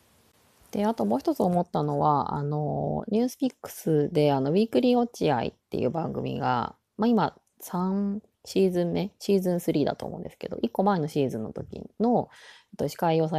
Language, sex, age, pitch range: Japanese, female, 20-39, 150-205 Hz